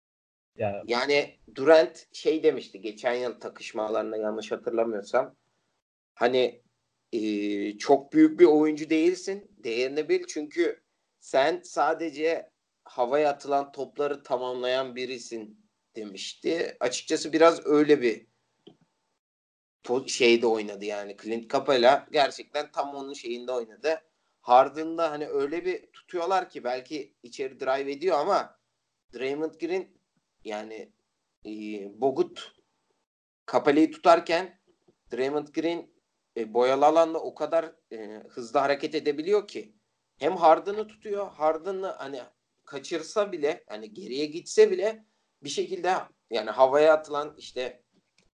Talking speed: 110 wpm